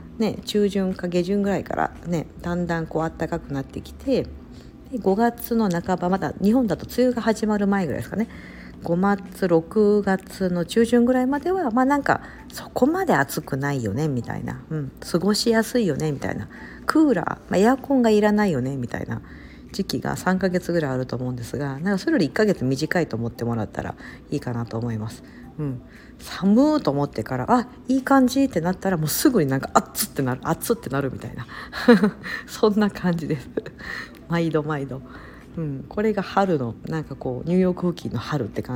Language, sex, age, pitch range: Japanese, female, 50-69, 135-220 Hz